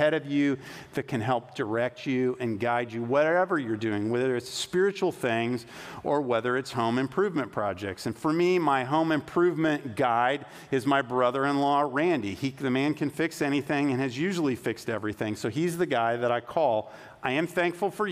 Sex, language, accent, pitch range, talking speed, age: male, English, American, 120-155 Hz, 185 wpm, 50-69